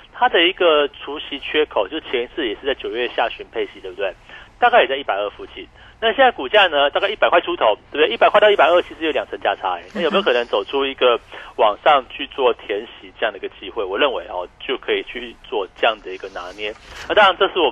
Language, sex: Chinese, male